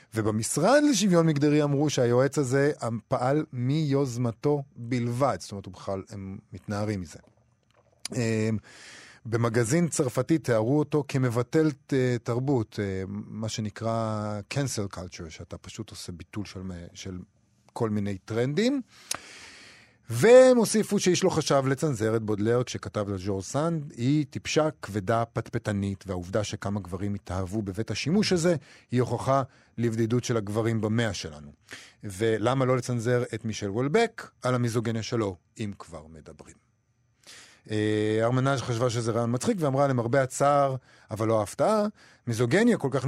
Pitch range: 105-140 Hz